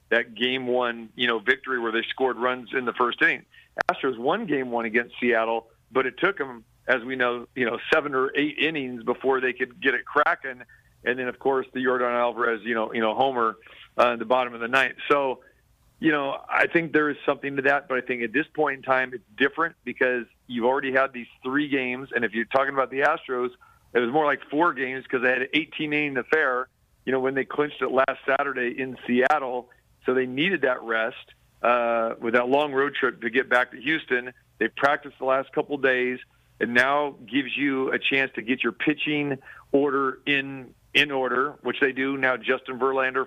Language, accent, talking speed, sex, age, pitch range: English, American, 220 wpm, male, 50-69, 120-140 Hz